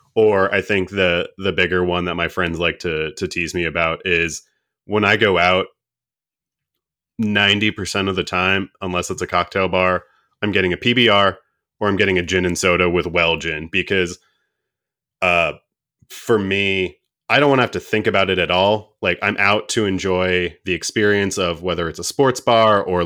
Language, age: English, 20-39